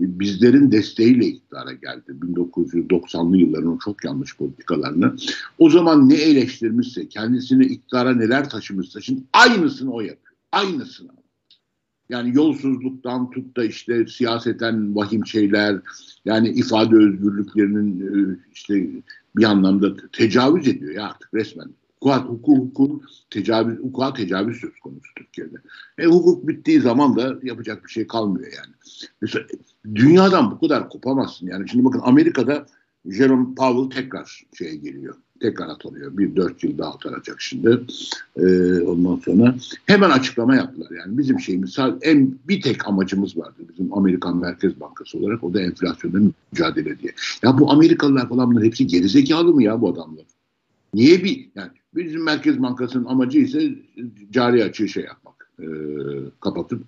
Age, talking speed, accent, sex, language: 60-79, 135 wpm, native, male, Turkish